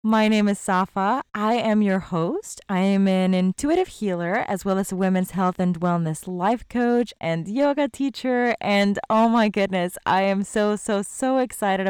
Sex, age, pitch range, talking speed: female, 20-39, 175-225 Hz, 180 wpm